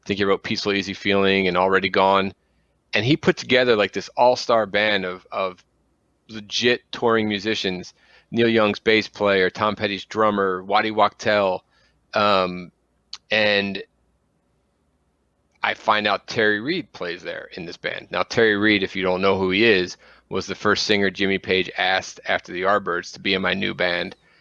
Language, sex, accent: English, male, American